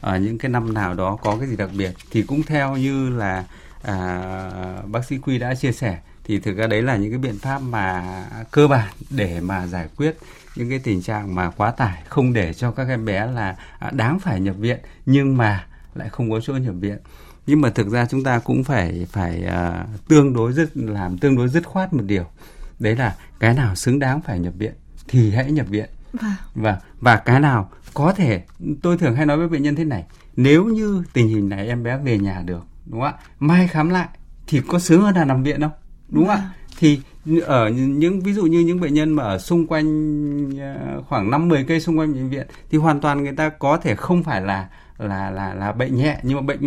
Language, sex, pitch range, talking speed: Vietnamese, male, 105-150 Hz, 230 wpm